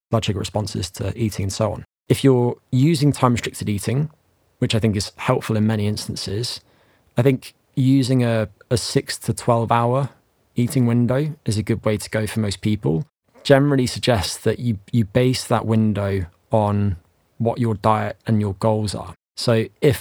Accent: British